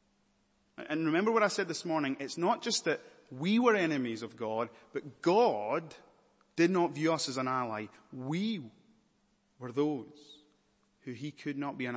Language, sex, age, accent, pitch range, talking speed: English, male, 30-49, British, 120-150 Hz, 170 wpm